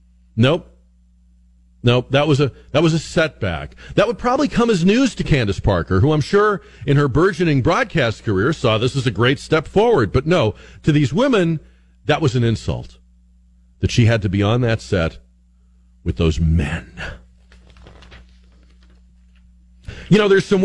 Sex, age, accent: male, 40-59, American